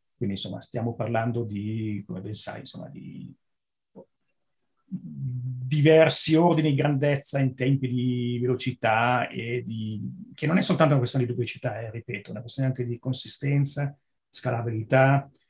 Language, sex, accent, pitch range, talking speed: Italian, male, native, 120-140 Hz, 140 wpm